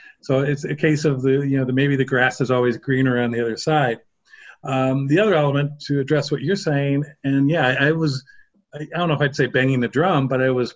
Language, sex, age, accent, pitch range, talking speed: English, male, 50-69, American, 125-145 Hz, 255 wpm